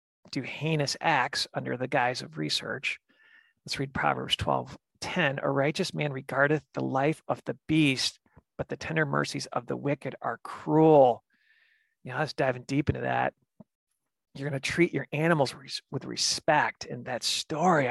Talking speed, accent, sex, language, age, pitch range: 165 wpm, American, male, English, 40-59, 130-155 Hz